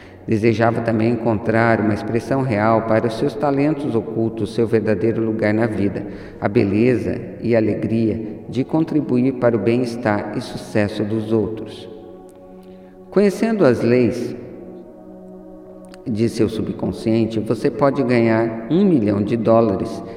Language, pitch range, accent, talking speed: Portuguese, 105-120 Hz, Brazilian, 130 wpm